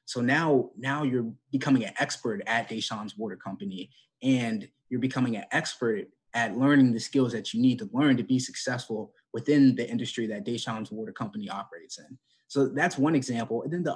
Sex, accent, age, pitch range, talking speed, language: male, American, 20-39, 115-140 Hz, 190 wpm, English